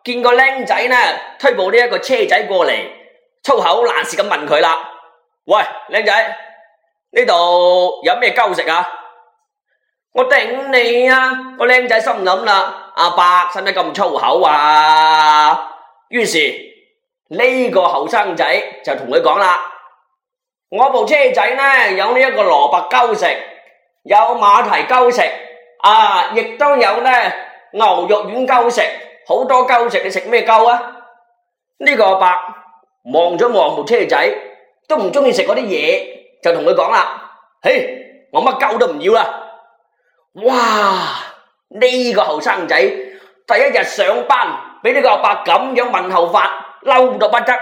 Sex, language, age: male, Chinese, 20-39